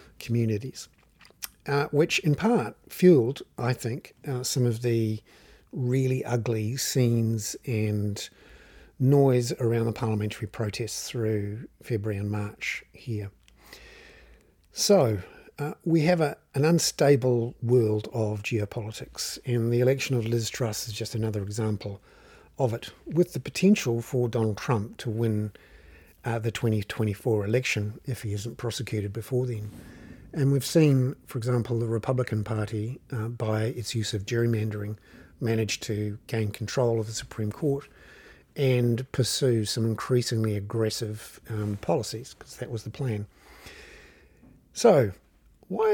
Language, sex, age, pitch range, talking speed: English, male, 50-69, 110-135 Hz, 135 wpm